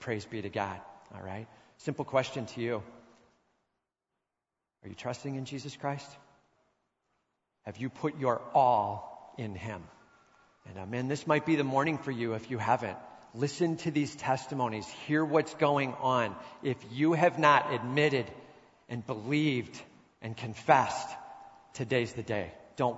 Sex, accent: male, American